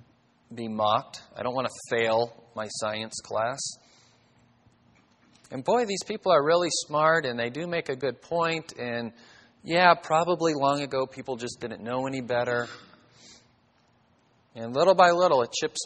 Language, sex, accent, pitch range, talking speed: English, male, American, 115-140 Hz, 155 wpm